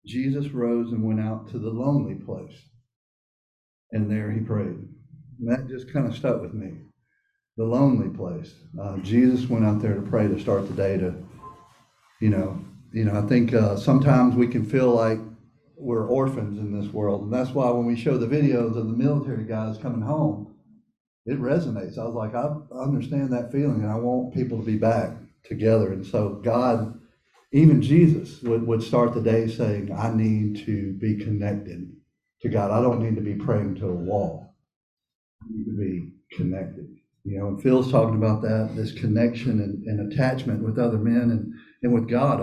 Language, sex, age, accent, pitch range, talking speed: English, male, 50-69, American, 105-130 Hz, 190 wpm